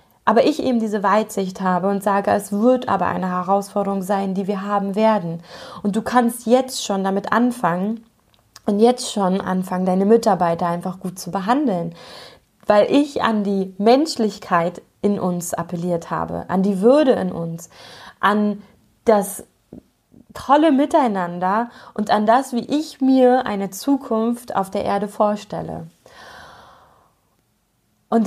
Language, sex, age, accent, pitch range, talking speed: German, female, 20-39, German, 195-240 Hz, 140 wpm